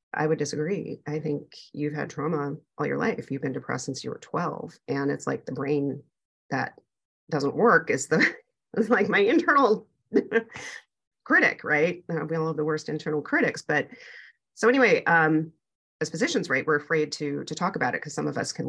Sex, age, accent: female, 30-49, American